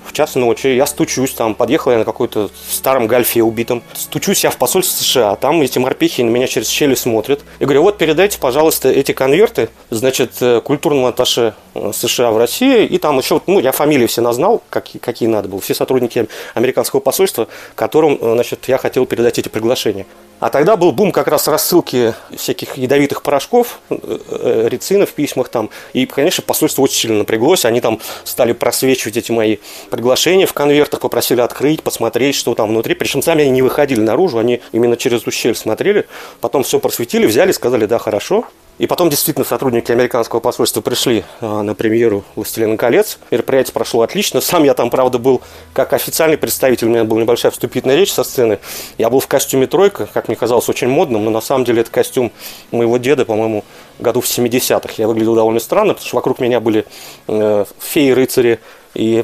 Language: Russian